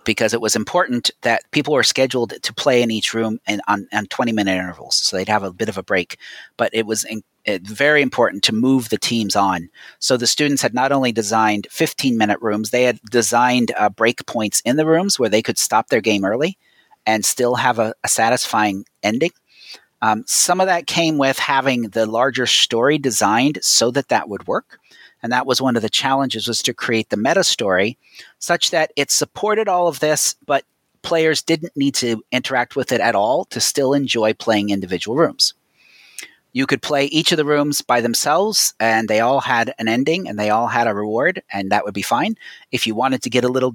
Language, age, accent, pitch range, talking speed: English, 40-59, American, 110-150 Hz, 210 wpm